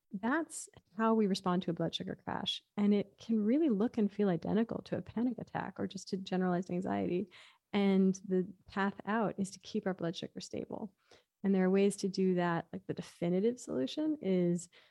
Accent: American